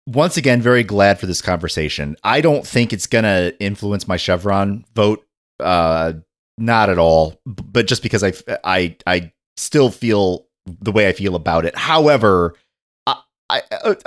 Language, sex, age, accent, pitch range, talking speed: English, male, 30-49, American, 90-130 Hz, 160 wpm